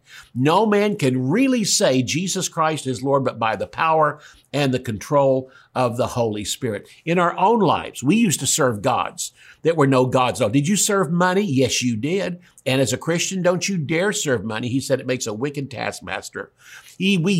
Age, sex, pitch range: 50-69, male, 130-175 Hz